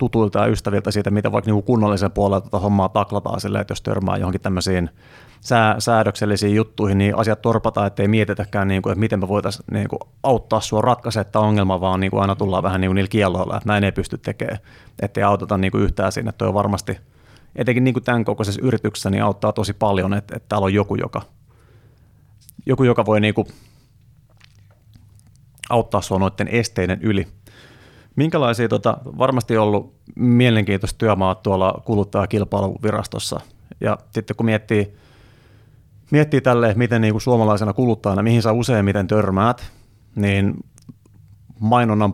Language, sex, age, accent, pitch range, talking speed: Finnish, male, 30-49, native, 100-115 Hz, 155 wpm